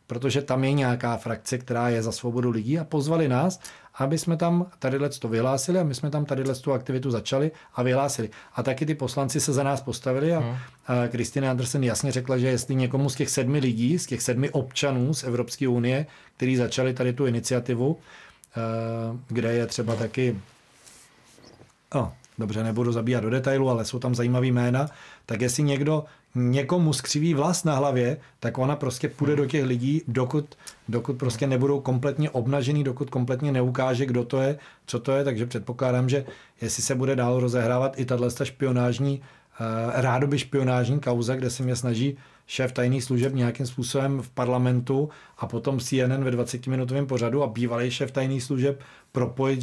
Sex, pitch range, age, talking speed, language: male, 125-140 Hz, 40-59, 175 wpm, Czech